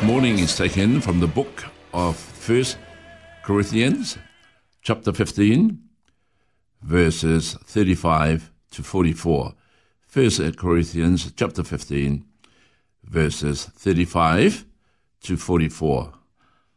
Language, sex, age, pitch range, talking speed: English, male, 60-79, 85-110 Hz, 80 wpm